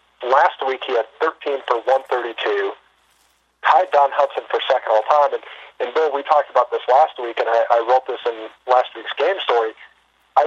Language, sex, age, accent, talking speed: English, male, 40-59, American, 190 wpm